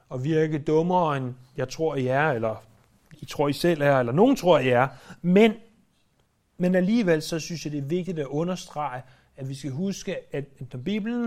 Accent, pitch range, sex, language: native, 135-180 Hz, male, Danish